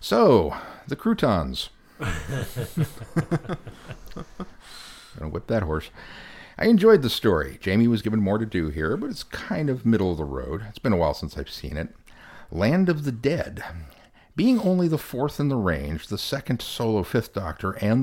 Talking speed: 175 wpm